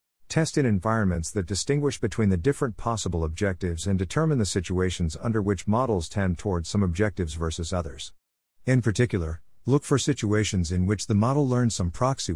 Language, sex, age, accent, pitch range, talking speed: English, male, 50-69, American, 85-115 Hz, 170 wpm